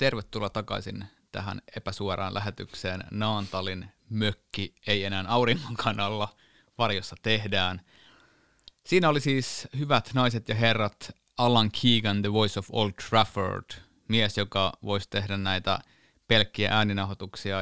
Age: 30-49